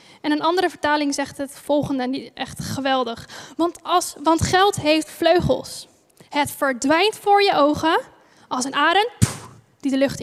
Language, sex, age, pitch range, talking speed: Dutch, female, 10-29, 275-335 Hz, 170 wpm